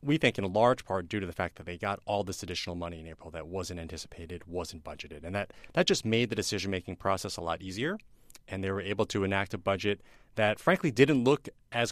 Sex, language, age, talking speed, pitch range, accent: male, English, 30-49, 235 wpm, 95-120 Hz, American